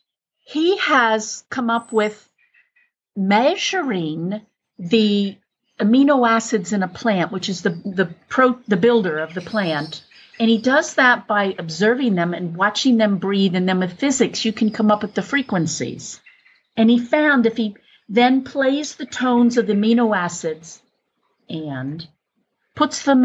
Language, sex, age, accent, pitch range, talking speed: English, female, 50-69, American, 185-250 Hz, 155 wpm